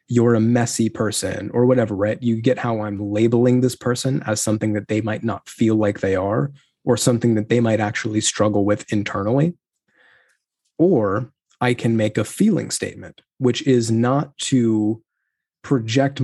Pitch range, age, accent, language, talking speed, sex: 105-120 Hz, 20-39, American, English, 165 wpm, male